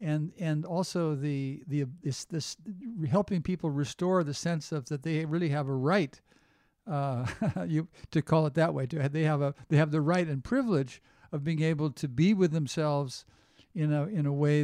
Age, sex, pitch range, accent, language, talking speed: 50-69, male, 140-160 Hz, American, English, 200 wpm